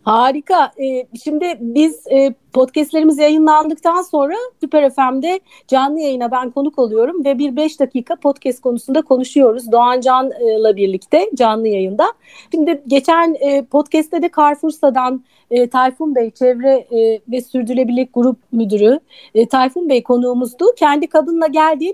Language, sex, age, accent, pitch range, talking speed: Turkish, female, 40-59, native, 255-345 Hz, 120 wpm